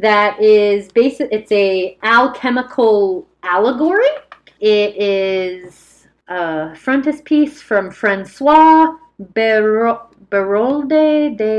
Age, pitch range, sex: 30-49, 185-260 Hz, female